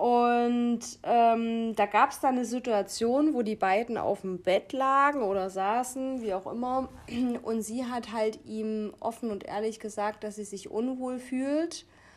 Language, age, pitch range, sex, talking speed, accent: German, 30-49, 210-250 Hz, female, 170 wpm, German